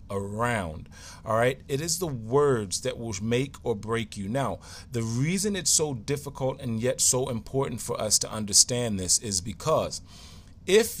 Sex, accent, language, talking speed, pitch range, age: male, American, English, 170 wpm, 100-130 Hz, 30-49